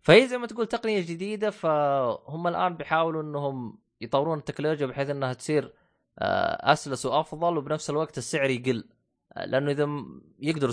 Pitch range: 110-155 Hz